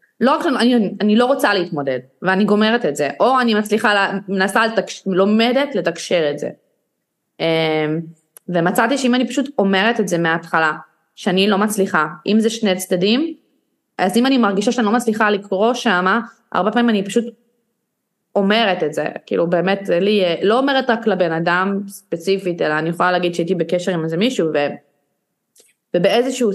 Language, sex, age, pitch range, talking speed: Hebrew, female, 20-39, 185-240 Hz, 165 wpm